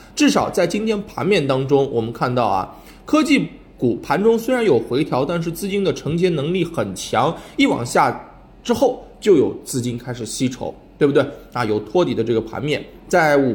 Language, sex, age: Chinese, male, 20-39